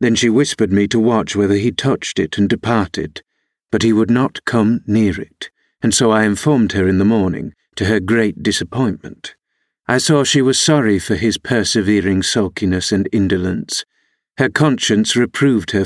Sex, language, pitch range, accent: male, English, 100-130 Hz, British